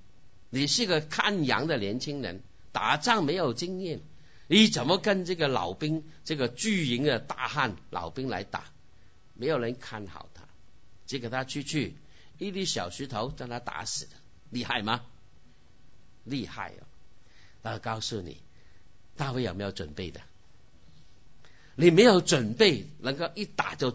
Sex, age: male, 50-69